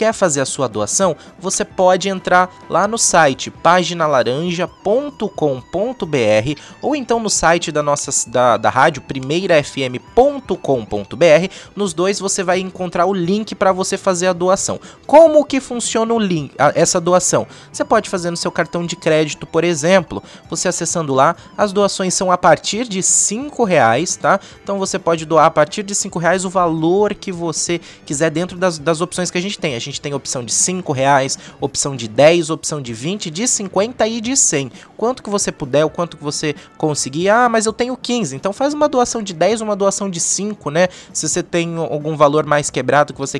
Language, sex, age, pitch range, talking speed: Portuguese, male, 20-39, 155-200 Hz, 190 wpm